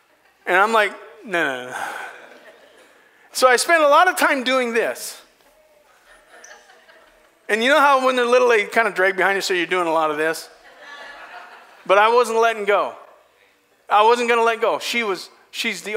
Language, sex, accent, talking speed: English, male, American, 190 wpm